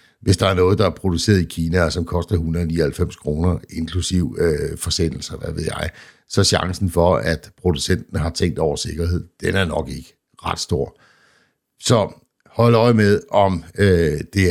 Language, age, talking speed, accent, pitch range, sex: Danish, 60-79, 175 wpm, native, 80-90 Hz, male